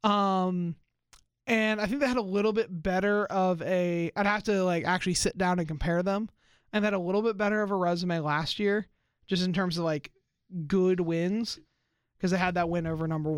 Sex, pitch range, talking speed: male, 170-205 Hz, 215 wpm